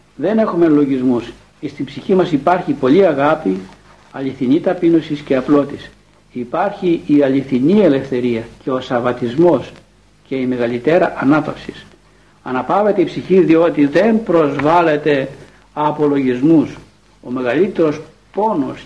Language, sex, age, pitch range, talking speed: Greek, male, 60-79, 130-170 Hz, 110 wpm